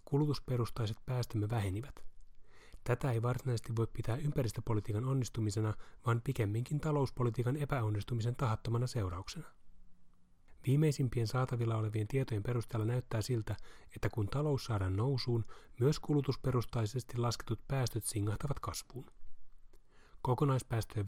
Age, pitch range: 30-49, 110-130 Hz